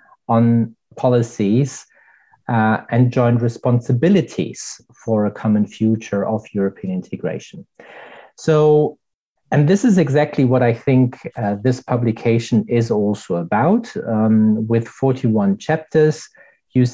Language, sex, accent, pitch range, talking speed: English, male, German, 110-135 Hz, 115 wpm